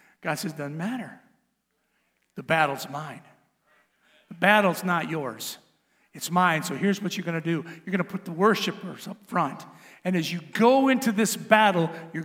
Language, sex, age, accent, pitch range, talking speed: English, male, 50-69, American, 190-305 Hz, 180 wpm